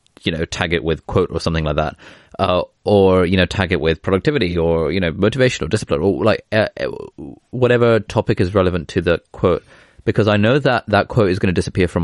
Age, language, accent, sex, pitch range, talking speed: 20-39, English, British, male, 80-95 Hz, 225 wpm